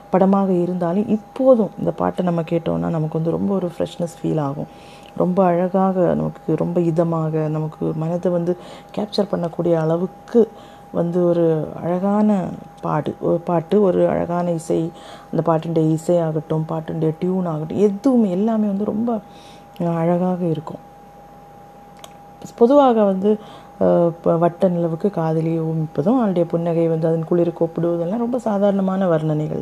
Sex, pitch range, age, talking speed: female, 165-205 Hz, 30-49, 125 wpm